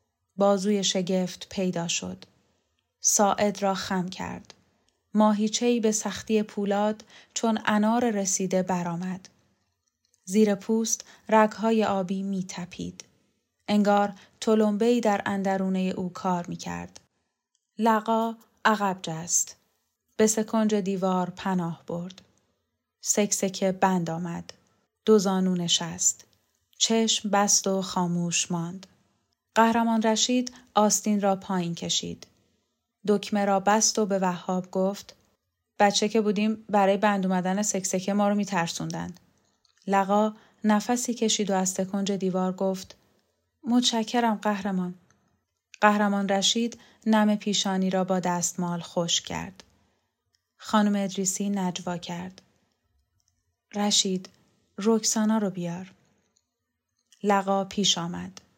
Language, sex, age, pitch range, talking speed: Persian, female, 10-29, 180-215 Hz, 100 wpm